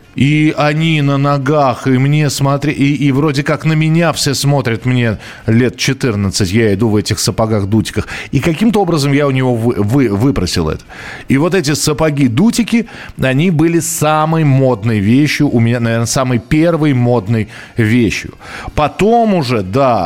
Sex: male